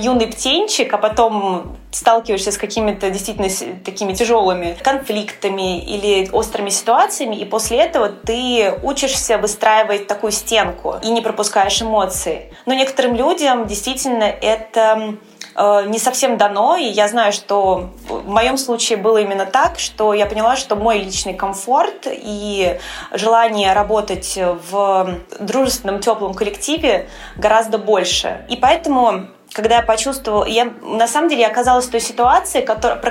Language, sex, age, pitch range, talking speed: Russian, female, 20-39, 195-235 Hz, 135 wpm